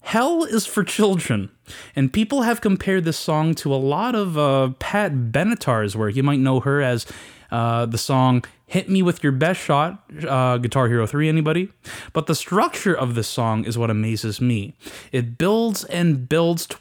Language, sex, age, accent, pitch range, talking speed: English, male, 20-39, American, 125-180 Hz, 185 wpm